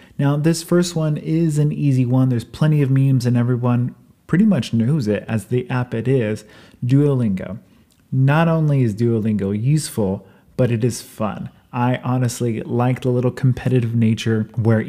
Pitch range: 115-145 Hz